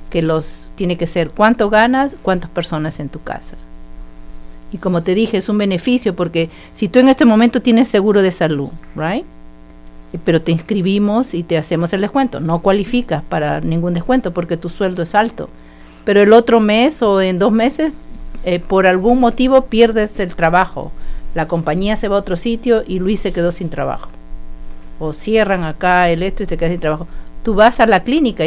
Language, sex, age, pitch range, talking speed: English, female, 50-69, 160-215 Hz, 190 wpm